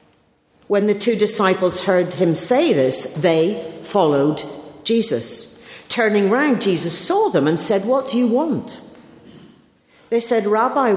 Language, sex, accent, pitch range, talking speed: English, female, British, 165-230 Hz, 135 wpm